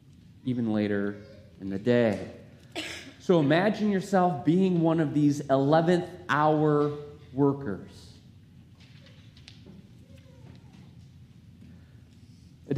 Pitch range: 130-175 Hz